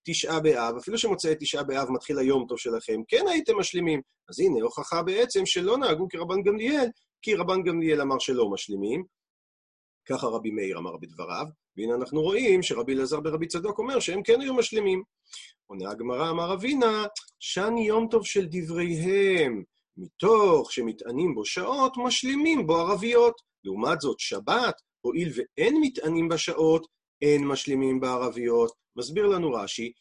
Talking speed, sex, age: 145 wpm, male, 40-59